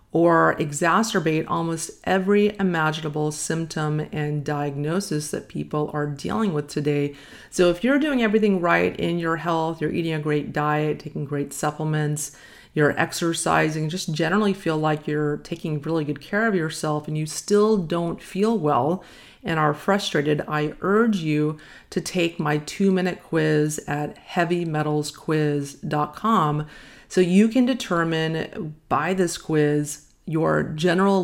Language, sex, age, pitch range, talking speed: English, female, 40-59, 150-180 Hz, 140 wpm